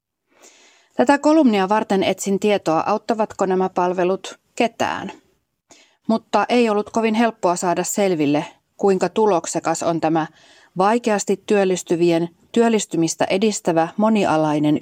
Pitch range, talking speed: 165-210 Hz, 100 wpm